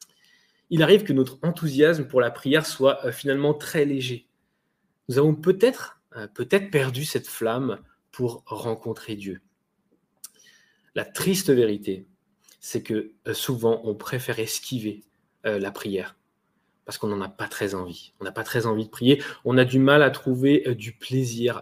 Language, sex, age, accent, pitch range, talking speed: French, male, 20-39, French, 125-160 Hz, 165 wpm